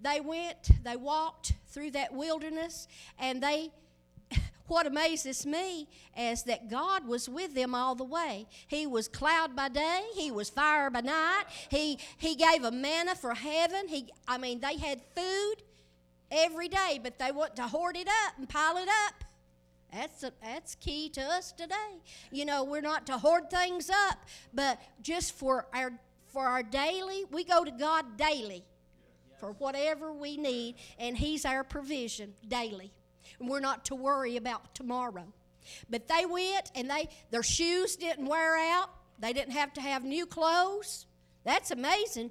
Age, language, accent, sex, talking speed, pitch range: 50-69, English, American, female, 170 wpm, 245-325 Hz